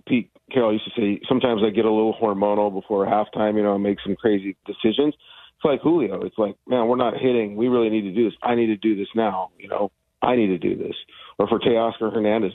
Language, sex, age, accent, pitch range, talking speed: English, male, 40-59, American, 100-120 Hz, 250 wpm